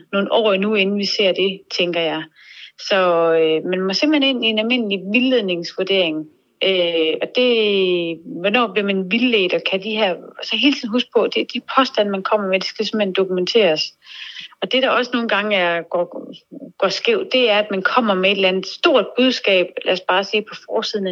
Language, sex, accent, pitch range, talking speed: Danish, female, native, 180-230 Hz, 205 wpm